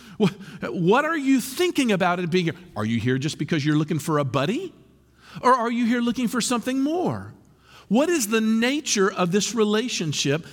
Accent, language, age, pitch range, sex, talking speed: American, English, 50-69, 155-240 Hz, male, 190 wpm